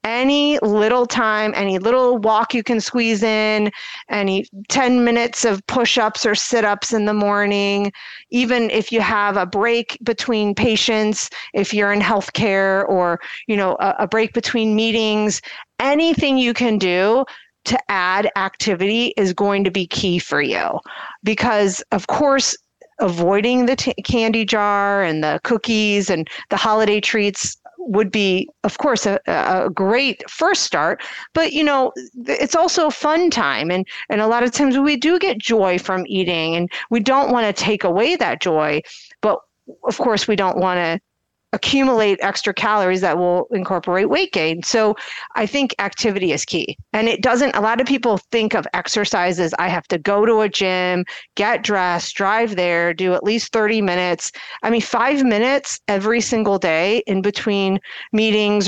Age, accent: 40-59, American